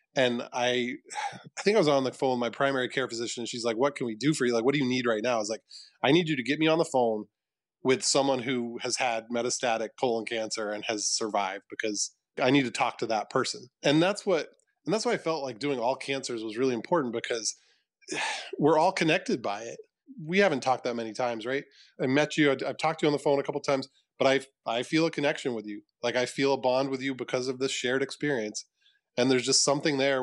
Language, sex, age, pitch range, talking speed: English, male, 20-39, 125-150 Hz, 250 wpm